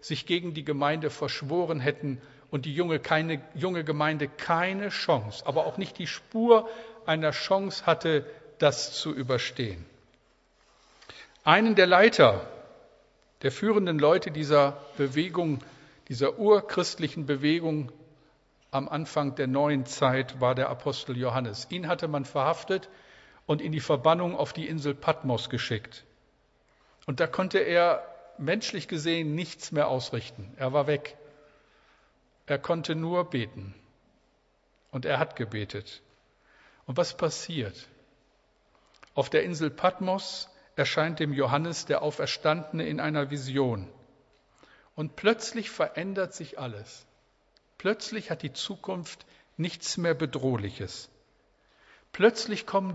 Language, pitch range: German, 135-175 Hz